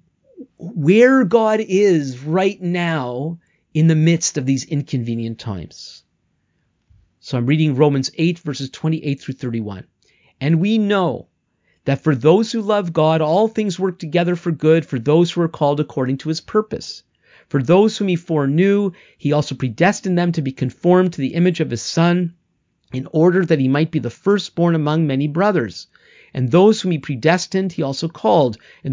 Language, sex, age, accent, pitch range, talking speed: English, male, 40-59, American, 140-190 Hz, 170 wpm